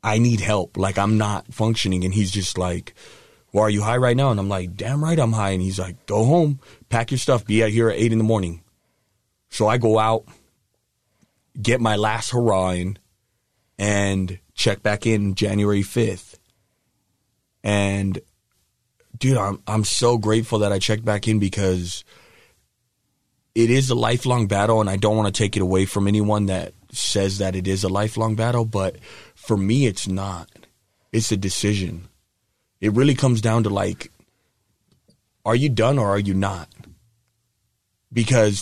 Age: 30-49